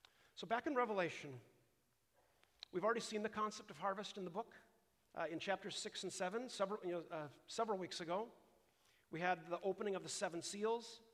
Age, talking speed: 50-69, 180 wpm